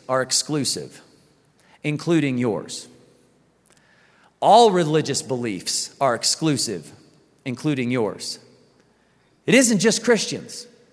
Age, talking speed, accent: 40-59, 80 wpm, American